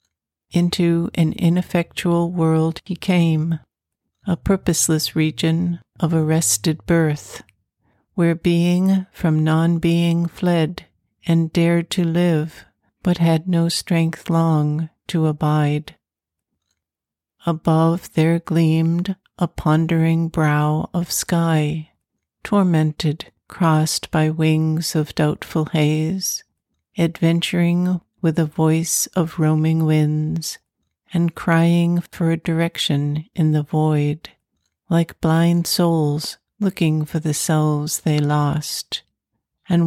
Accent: American